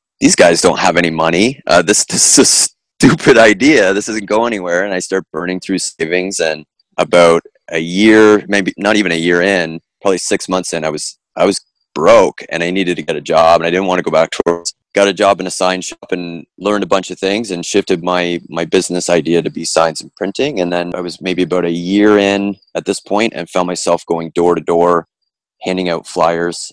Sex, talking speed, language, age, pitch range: male, 235 wpm, English, 30-49, 85-95 Hz